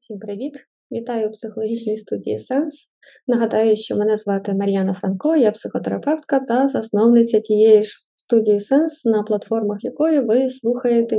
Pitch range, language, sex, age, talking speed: 215-245 Hz, Ukrainian, female, 20-39, 140 wpm